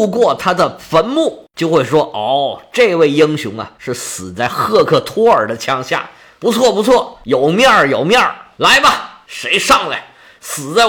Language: Chinese